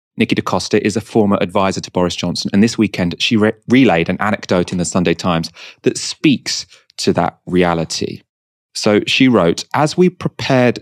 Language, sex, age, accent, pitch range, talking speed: English, male, 30-49, British, 95-125 Hz, 175 wpm